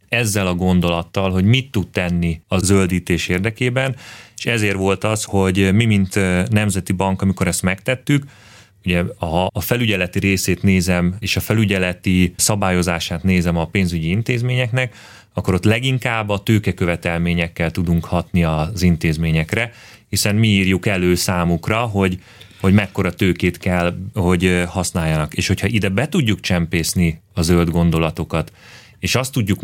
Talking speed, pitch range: 140 wpm, 90-110 Hz